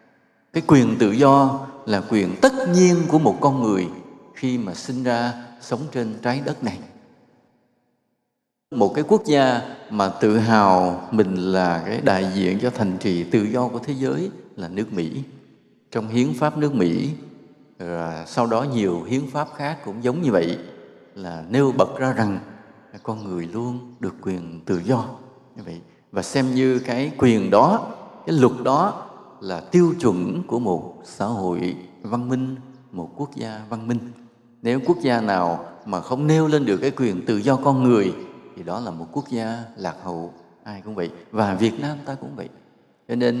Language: Vietnamese